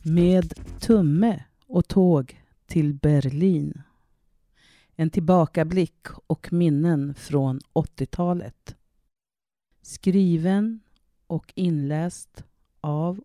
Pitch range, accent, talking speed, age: 135-175 Hz, native, 70 wpm, 40-59